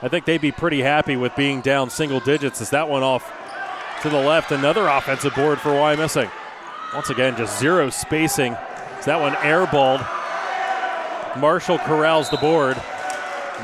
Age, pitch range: 30-49, 130-155 Hz